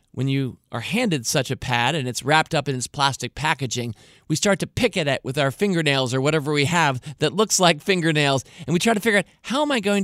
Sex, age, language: male, 40-59, English